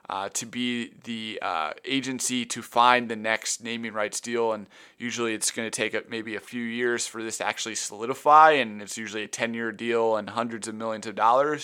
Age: 20-39